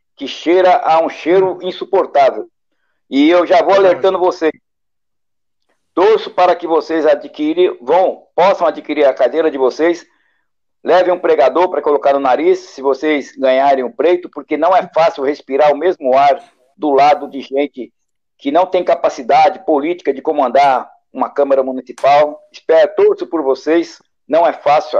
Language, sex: Portuguese, male